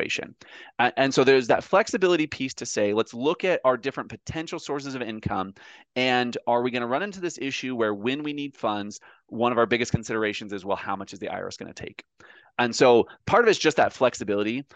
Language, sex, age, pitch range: English, male, 30-49, 110-155 Hz